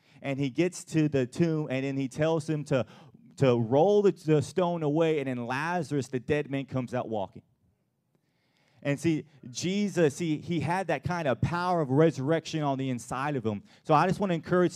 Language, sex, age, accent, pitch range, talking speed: English, male, 30-49, American, 135-165 Hz, 200 wpm